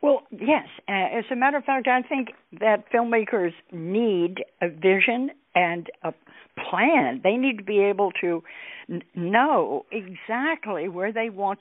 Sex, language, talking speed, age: female, English, 145 wpm, 60-79